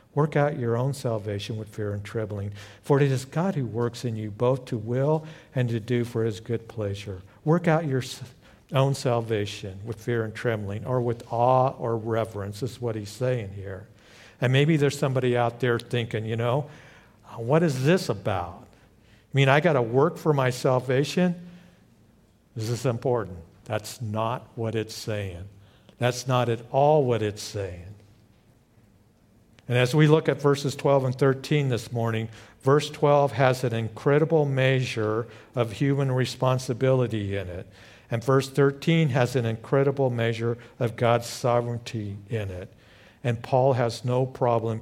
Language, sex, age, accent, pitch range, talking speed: English, male, 50-69, American, 110-135 Hz, 165 wpm